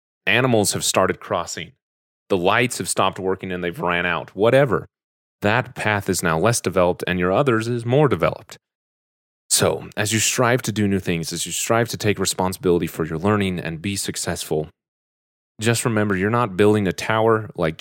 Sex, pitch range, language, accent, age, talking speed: male, 90-110 Hz, English, American, 30-49, 180 wpm